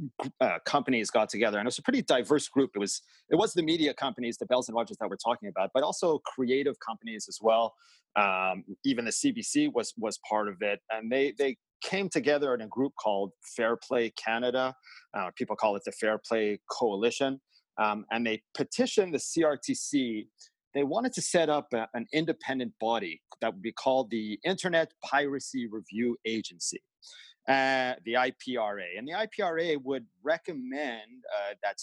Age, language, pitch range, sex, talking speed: 30-49, English, 115-160 Hz, male, 175 wpm